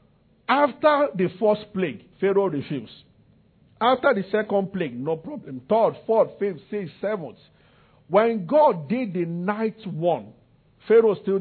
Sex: male